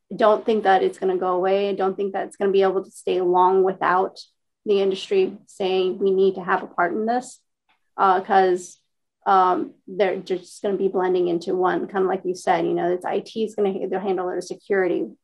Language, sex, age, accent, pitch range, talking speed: English, female, 30-49, American, 190-225 Hz, 230 wpm